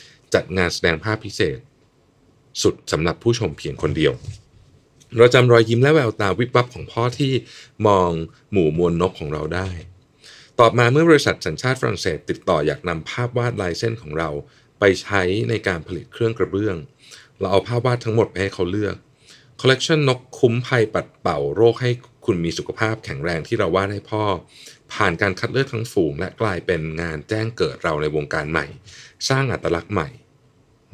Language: Thai